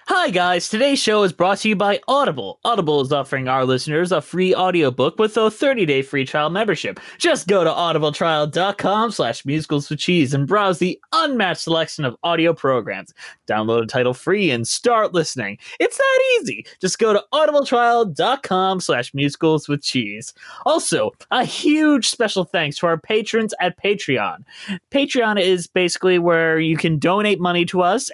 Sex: male